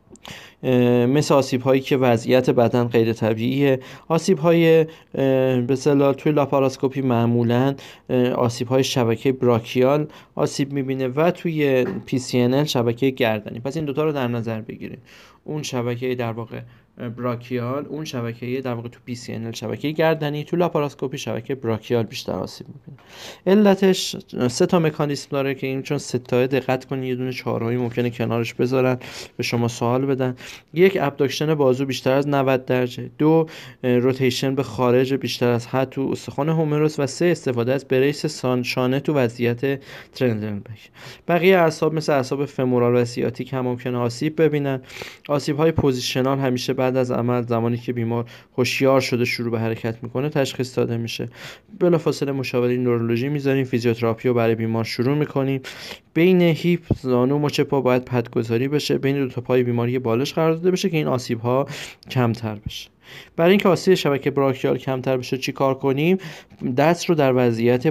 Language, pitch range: Persian, 120-145 Hz